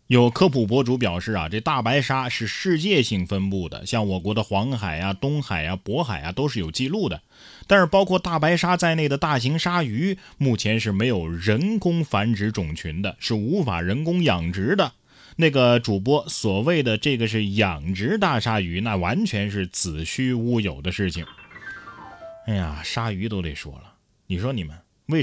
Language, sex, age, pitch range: Chinese, male, 20-39, 100-155 Hz